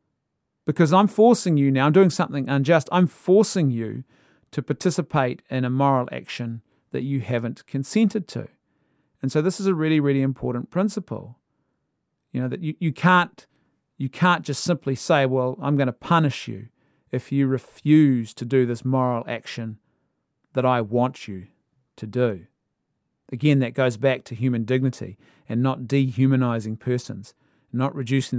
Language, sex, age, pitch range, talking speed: English, male, 40-59, 125-160 Hz, 160 wpm